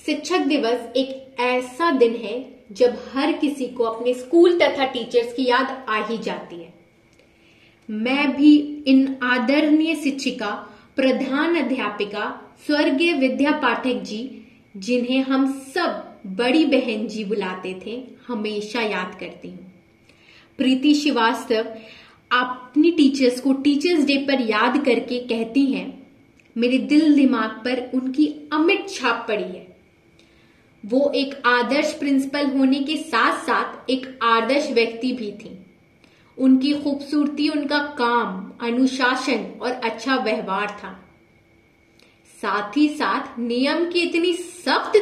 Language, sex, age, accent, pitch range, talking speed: English, female, 30-49, Indian, 235-295 Hz, 110 wpm